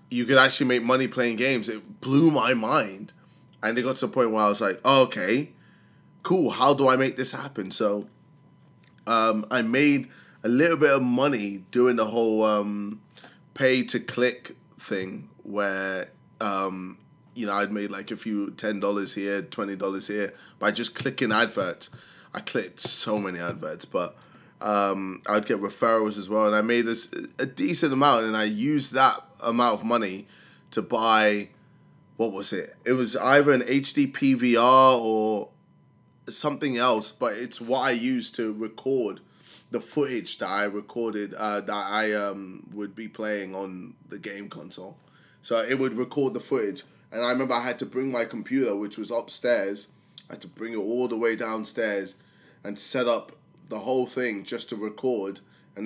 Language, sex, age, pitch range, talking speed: English, male, 20-39, 105-125 Hz, 175 wpm